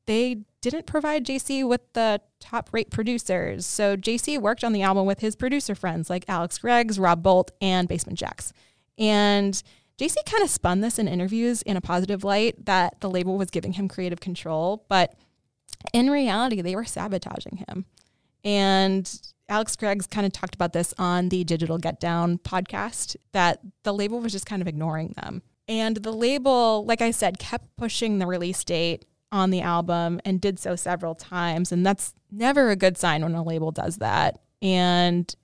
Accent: American